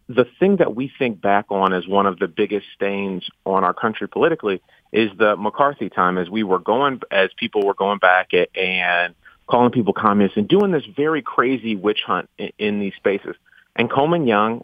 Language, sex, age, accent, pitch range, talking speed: English, male, 30-49, American, 100-115 Hz, 195 wpm